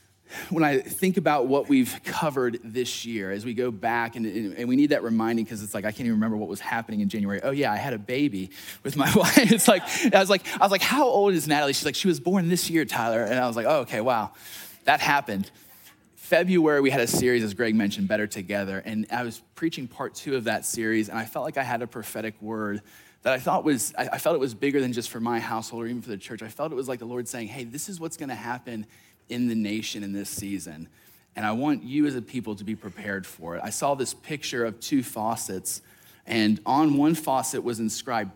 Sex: male